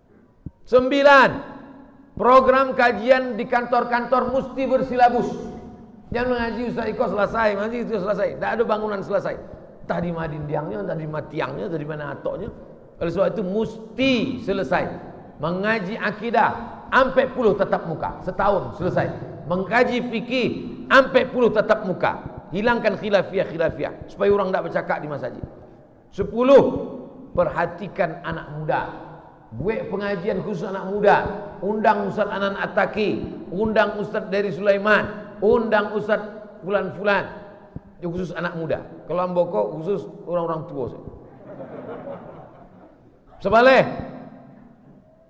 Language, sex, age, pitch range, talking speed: Indonesian, male, 40-59, 180-225 Hz, 115 wpm